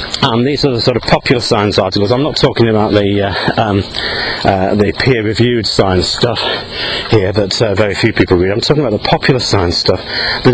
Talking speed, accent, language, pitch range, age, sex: 205 wpm, British, English, 100-125 Hz, 40-59, male